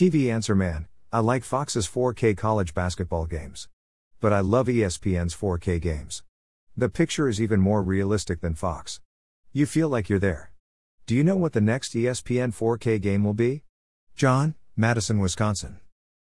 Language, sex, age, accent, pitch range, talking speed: English, male, 50-69, American, 90-115 Hz, 160 wpm